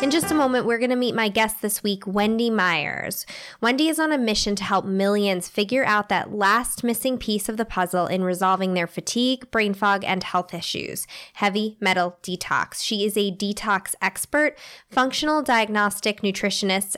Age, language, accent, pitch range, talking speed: 10-29, English, American, 195-245 Hz, 180 wpm